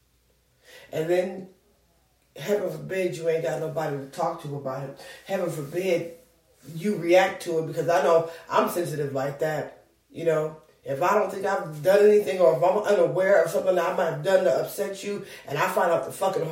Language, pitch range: English, 165-210 Hz